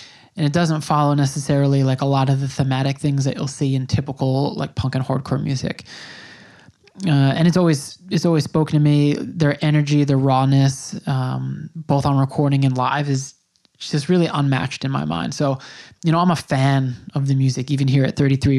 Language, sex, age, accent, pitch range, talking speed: English, male, 20-39, American, 135-155 Hz, 195 wpm